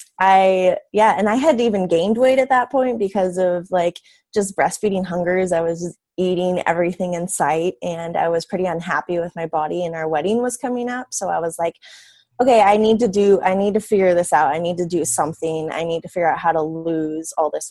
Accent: American